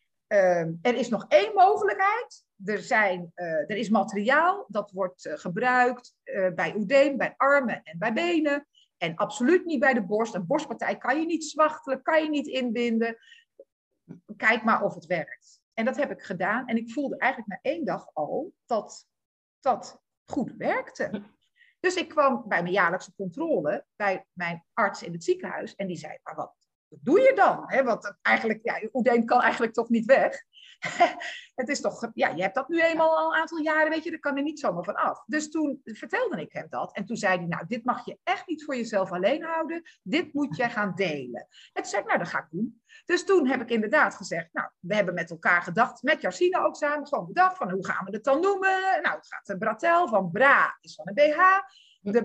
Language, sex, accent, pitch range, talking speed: Dutch, female, Dutch, 200-310 Hz, 215 wpm